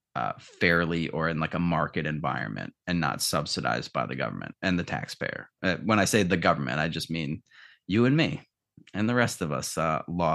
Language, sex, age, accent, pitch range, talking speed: English, male, 30-49, American, 80-115 Hz, 210 wpm